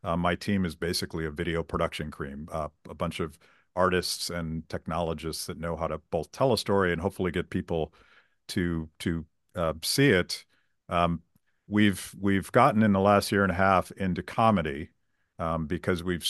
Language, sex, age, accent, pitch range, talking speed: English, male, 50-69, American, 85-100 Hz, 185 wpm